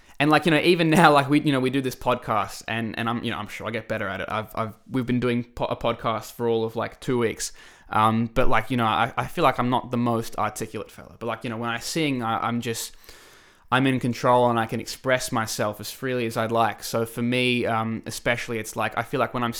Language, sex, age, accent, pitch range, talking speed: English, male, 20-39, Australian, 110-130 Hz, 275 wpm